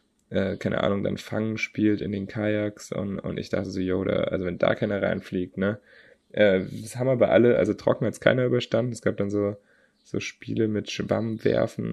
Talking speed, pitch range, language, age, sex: 210 wpm, 100-115 Hz, German, 20-39, male